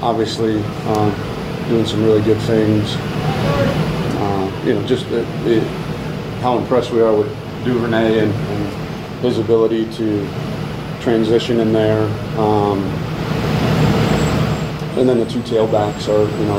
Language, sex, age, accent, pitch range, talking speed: English, male, 40-59, American, 105-115 Hz, 125 wpm